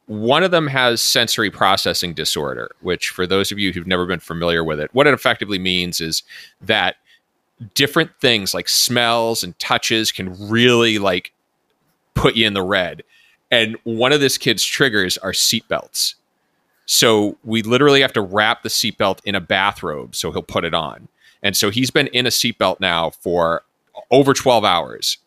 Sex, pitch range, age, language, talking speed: male, 95-120 Hz, 30-49, English, 175 wpm